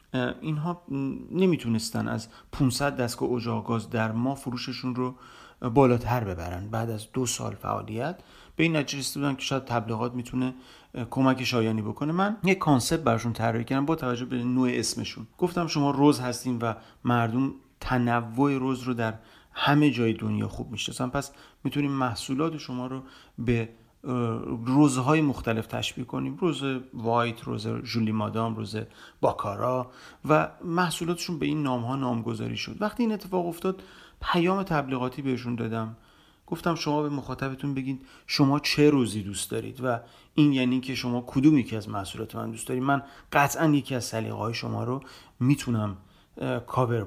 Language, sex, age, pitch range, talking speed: Persian, male, 40-59, 115-145 Hz, 150 wpm